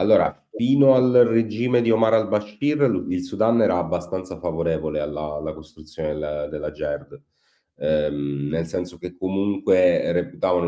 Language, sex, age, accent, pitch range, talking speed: Italian, male, 30-49, native, 80-95 Hz, 135 wpm